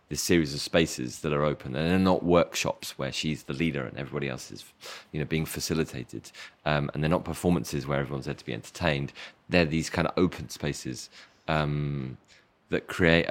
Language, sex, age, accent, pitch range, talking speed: Danish, male, 20-39, British, 70-85 Hz, 195 wpm